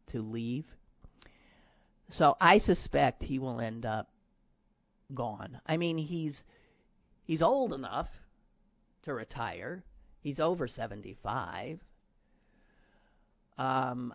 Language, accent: English, American